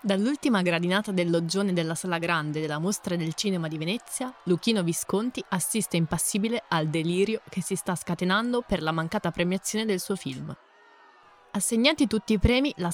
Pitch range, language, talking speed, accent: 170-215 Hz, Italian, 160 wpm, native